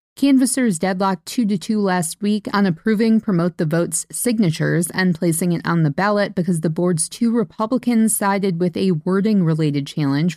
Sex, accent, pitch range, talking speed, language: female, American, 160-205 Hz, 155 wpm, English